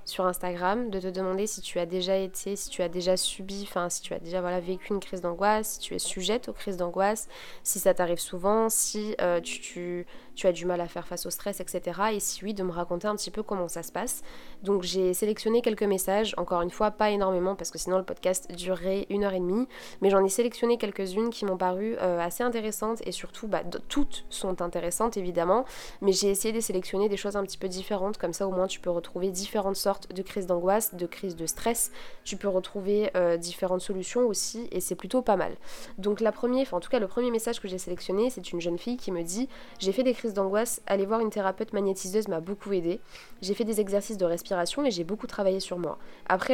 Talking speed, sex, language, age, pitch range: 240 wpm, female, French, 20-39, 180-215 Hz